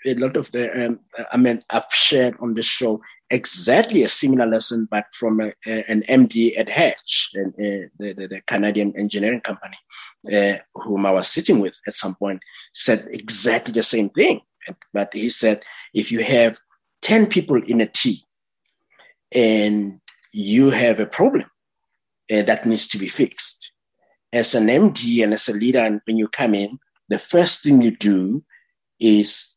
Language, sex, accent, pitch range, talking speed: English, male, South African, 105-125 Hz, 175 wpm